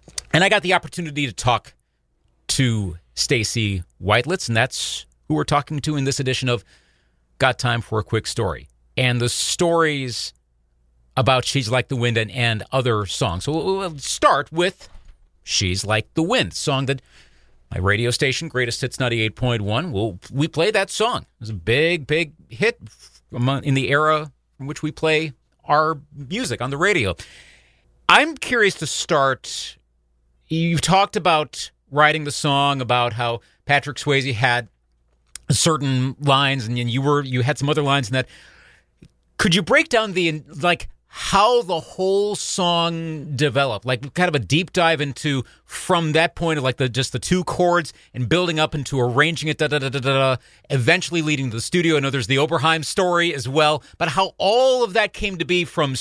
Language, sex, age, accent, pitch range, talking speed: English, male, 40-59, American, 120-160 Hz, 180 wpm